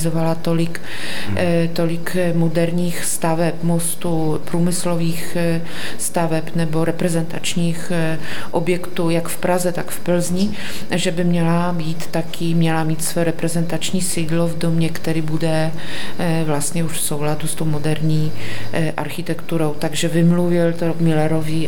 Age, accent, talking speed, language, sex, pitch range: 30-49, native, 115 wpm, Czech, female, 160-175 Hz